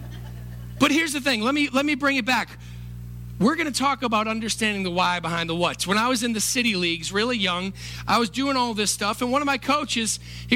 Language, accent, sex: English, American, male